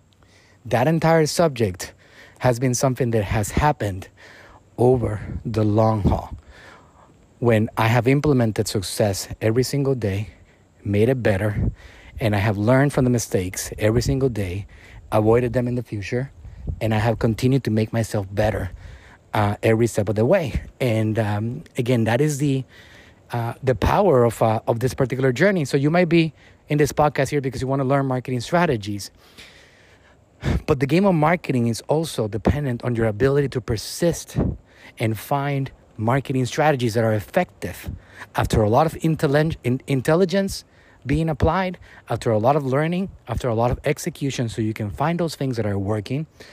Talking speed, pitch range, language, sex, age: 165 wpm, 105-135 Hz, English, male, 30-49